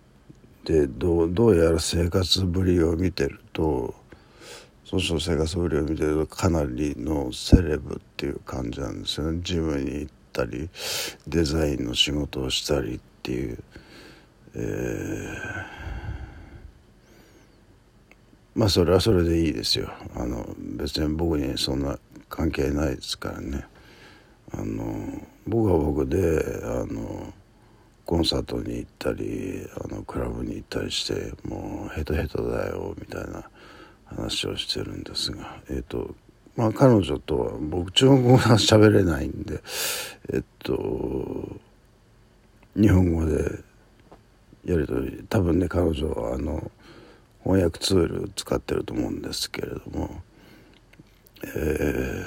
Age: 60-79